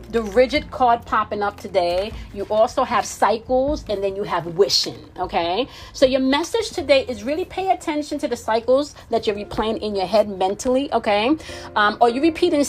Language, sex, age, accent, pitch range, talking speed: English, female, 30-49, American, 195-255 Hz, 185 wpm